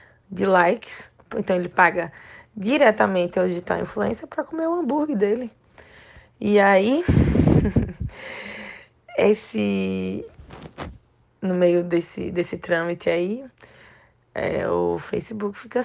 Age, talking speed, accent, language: 20-39, 100 wpm, Brazilian, Portuguese